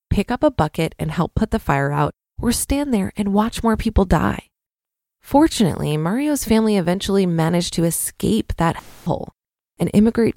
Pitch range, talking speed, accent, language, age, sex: 180-230 Hz, 170 wpm, American, English, 20-39, female